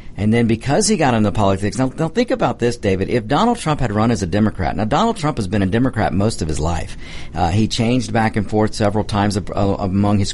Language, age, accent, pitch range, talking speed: English, 50-69, American, 100-130 Hz, 250 wpm